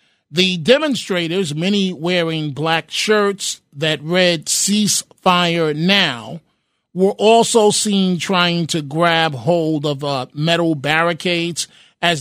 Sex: male